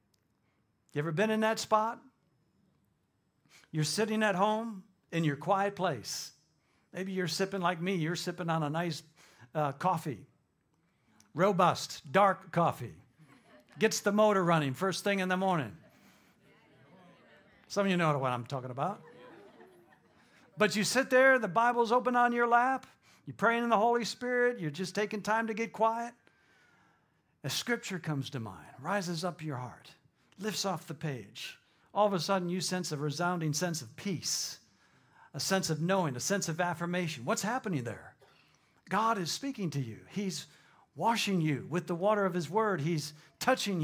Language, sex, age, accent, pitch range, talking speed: English, male, 60-79, American, 160-215 Hz, 165 wpm